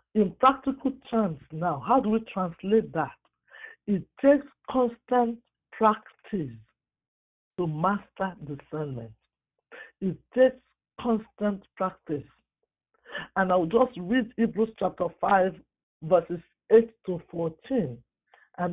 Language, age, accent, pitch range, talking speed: English, 50-69, Nigerian, 165-230 Hz, 105 wpm